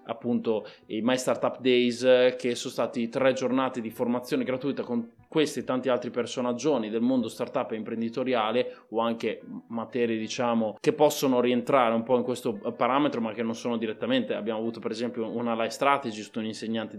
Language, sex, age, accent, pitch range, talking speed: Italian, male, 20-39, native, 120-140 Hz, 175 wpm